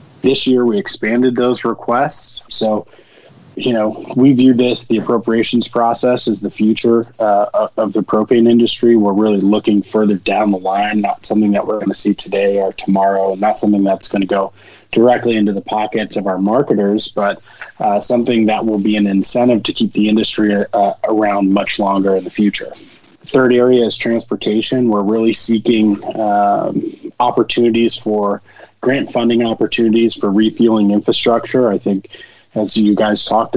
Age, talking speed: 20-39, 170 wpm